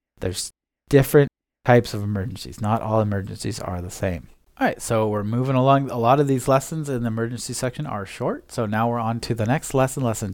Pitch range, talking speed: 105-130 Hz, 215 wpm